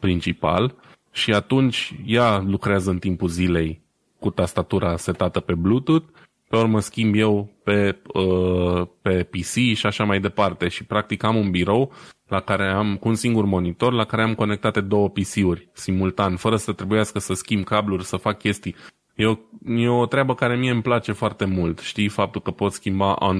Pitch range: 90-115 Hz